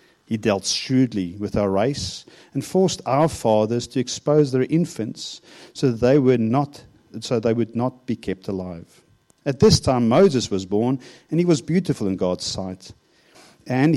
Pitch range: 110-160 Hz